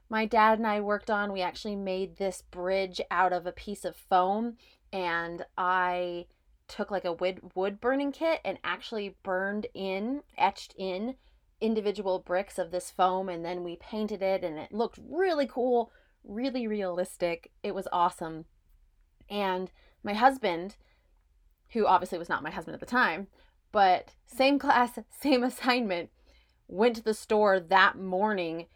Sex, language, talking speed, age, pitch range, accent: female, English, 155 wpm, 30-49, 180-235 Hz, American